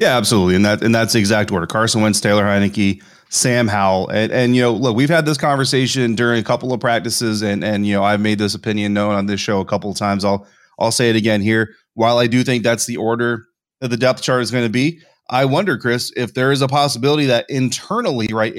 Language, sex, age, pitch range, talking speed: English, male, 30-49, 100-120 Hz, 250 wpm